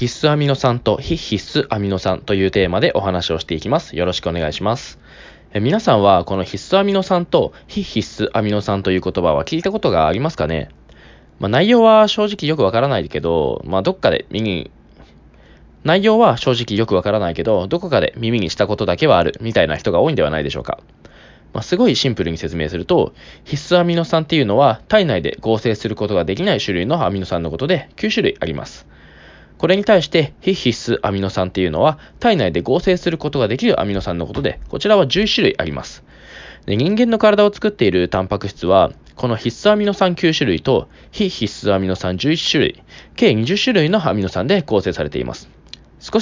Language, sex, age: Japanese, male, 20-39